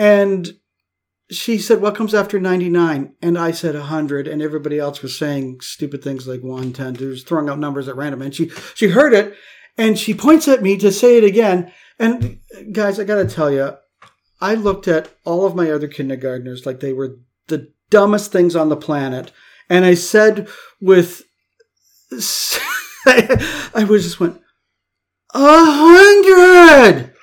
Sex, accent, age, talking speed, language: male, American, 50-69, 165 wpm, English